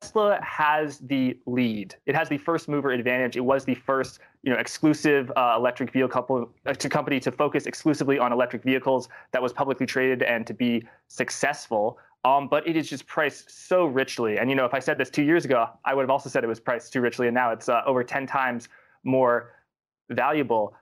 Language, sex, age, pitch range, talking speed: English, male, 20-39, 125-150 Hz, 215 wpm